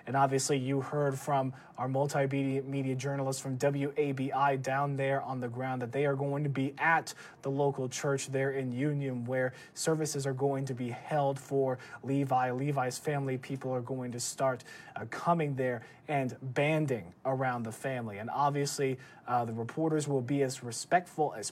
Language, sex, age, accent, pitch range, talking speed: English, male, 20-39, American, 135-155 Hz, 170 wpm